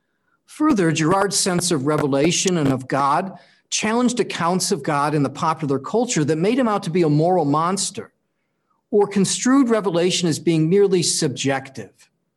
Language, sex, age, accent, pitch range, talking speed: English, male, 50-69, American, 145-195 Hz, 155 wpm